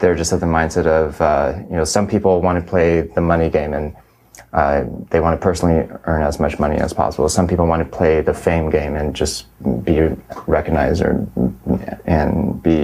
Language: English